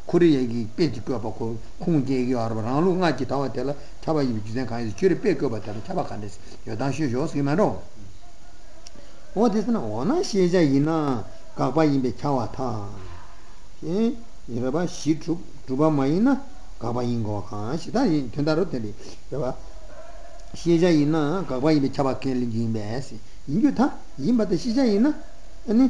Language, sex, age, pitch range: Italian, male, 60-79, 120-185 Hz